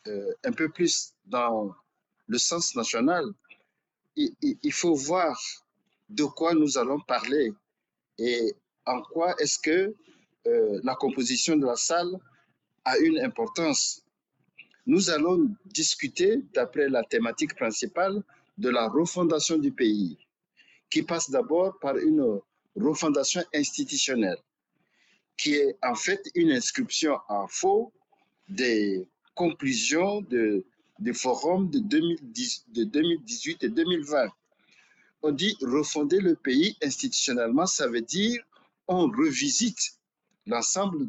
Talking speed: 120 wpm